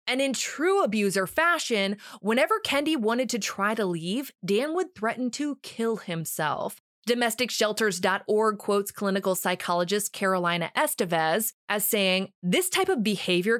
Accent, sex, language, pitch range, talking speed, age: American, female, English, 190-255 Hz, 130 wpm, 20-39